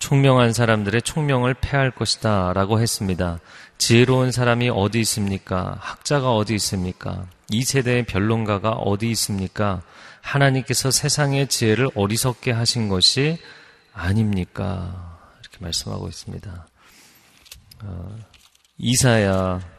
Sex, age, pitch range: male, 40-59, 95-120 Hz